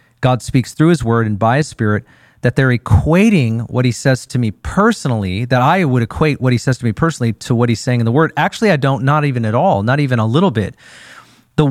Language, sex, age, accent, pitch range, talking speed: English, male, 40-59, American, 120-155 Hz, 245 wpm